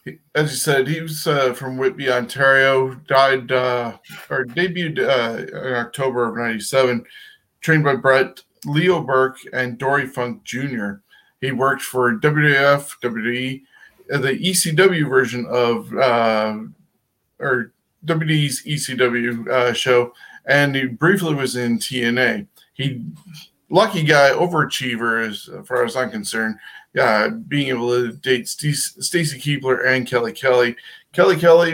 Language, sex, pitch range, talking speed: English, male, 120-145 Hz, 130 wpm